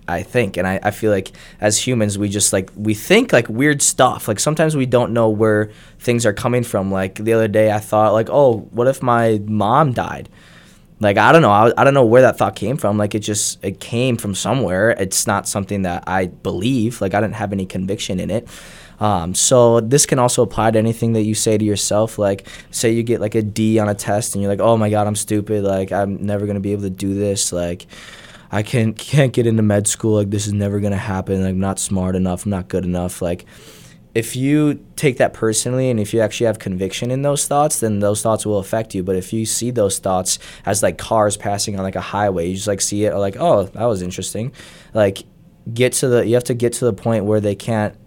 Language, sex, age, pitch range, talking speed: English, male, 20-39, 100-115 Hz, 250 wpm